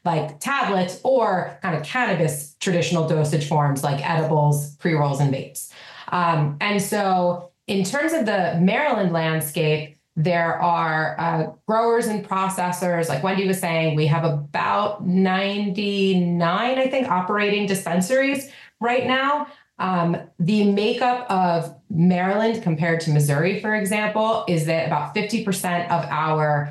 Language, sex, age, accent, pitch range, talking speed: English, female, 30-49, American, 155-195 Hz, 135 wpm